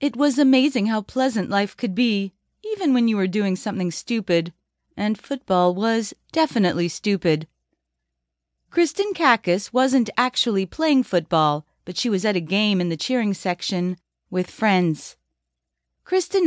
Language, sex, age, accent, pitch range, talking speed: English, female, 40-59, American, 185-280 Hz, 140 wpm